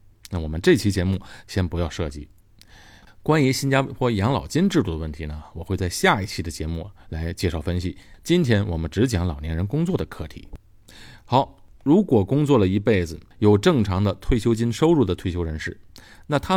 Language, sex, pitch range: Chinese, male, 95-115 Hz